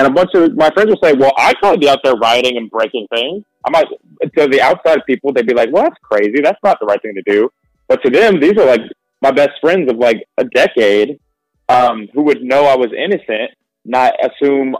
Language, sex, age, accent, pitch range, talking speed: English, male, 20-39, American, 110-140 Hz, 245 wpm